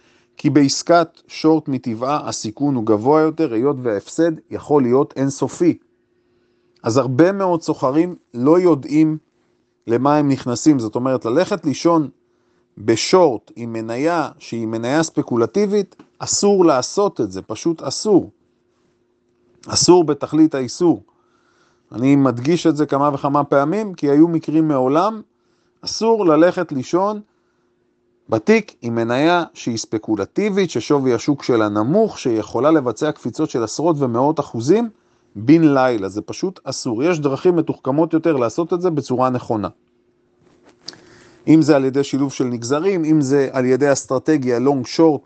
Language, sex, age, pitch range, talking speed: Hebrew, male, 40-59, 125-165 Hz, 130 wpm